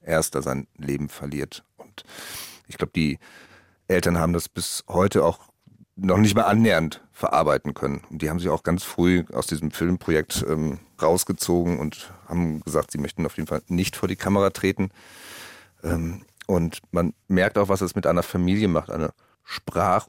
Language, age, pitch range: German, 40-59, 80-100 Hz